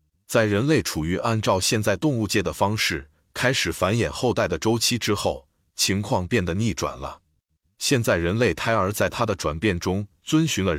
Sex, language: male, Chinese